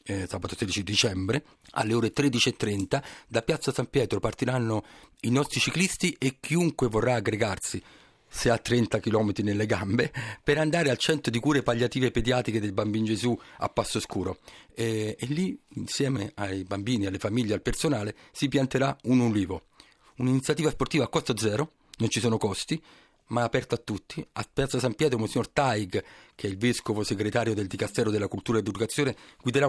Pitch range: 110-140 Hz